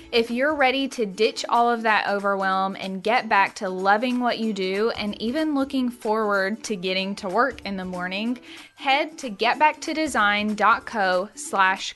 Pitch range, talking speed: 195-250 Hz, 160 wpm